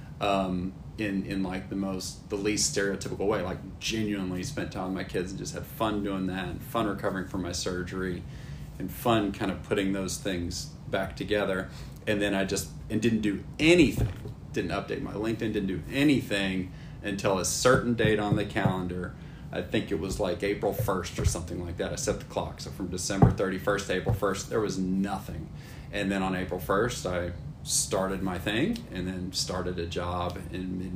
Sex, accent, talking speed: male, American, 195 wpm